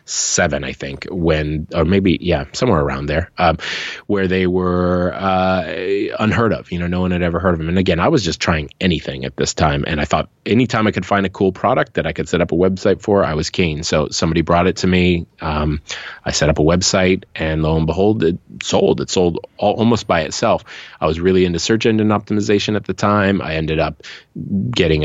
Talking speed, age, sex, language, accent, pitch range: 225 wpm, 30-49, male, English, American, 75-95 Hz